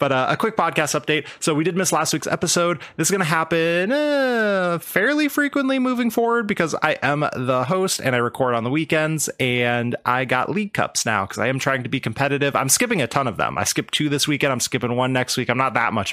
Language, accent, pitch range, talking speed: English, American, 120-165 Hz, 250 wpm